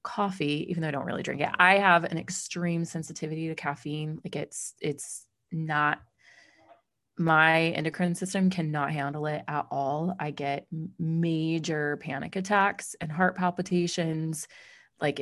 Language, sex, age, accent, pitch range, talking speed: English, female, 30-49, American, 155-185 Hz, 140 wpm